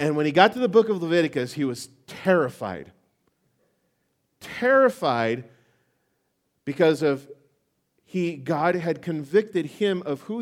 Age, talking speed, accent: 40-59, 125 wpm, American